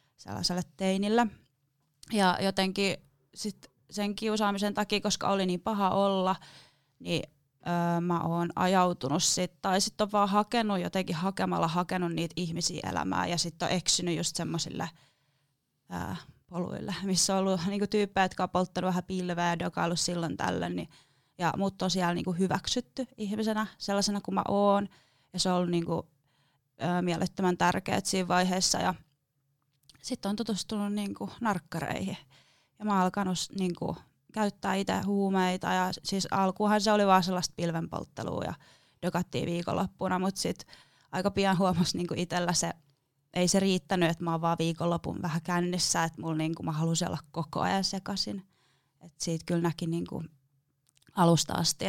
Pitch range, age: 165-195 Hz, 20-39